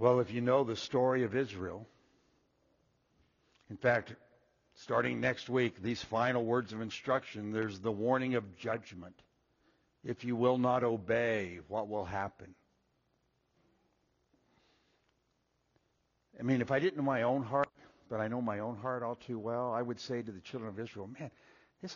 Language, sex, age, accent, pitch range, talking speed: English, male, 60-79, American, 115-190 Hz, 160 wpm